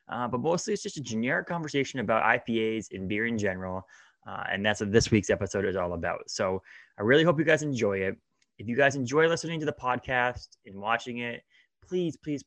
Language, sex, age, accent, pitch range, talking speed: English, male, 20-39, American, 100-130 Hz, 215 wpm